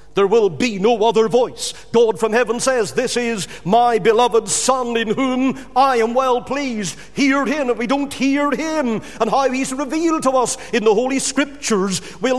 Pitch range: 160-255 Hz